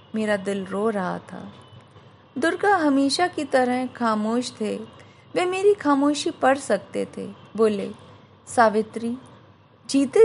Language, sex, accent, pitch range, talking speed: English, female, Indian, 220-290 Hz, 115 wpm